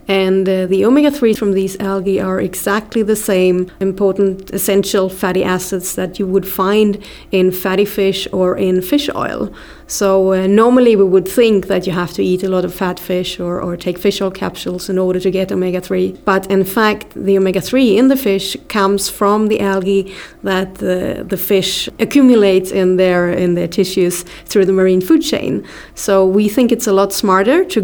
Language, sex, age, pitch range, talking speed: English, female, 30-49, 190-210 Hz, 190 wpm